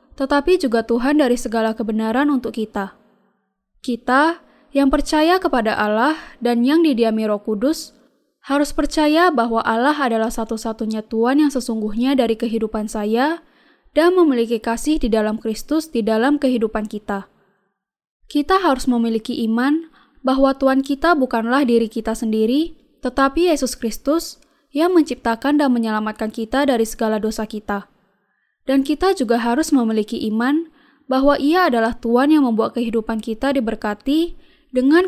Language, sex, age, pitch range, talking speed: Indonesian, female, 10-29, 225-290 Hz, 135 wpm